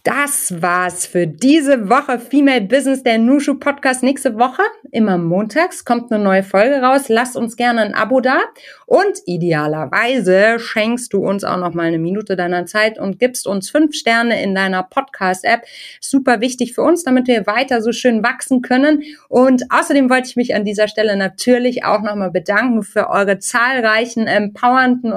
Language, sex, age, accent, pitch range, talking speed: German, female, 30-49, German, 200-260 Hz, 165 wpm